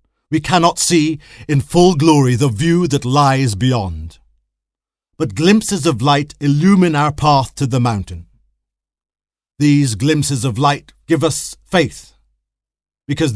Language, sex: English, male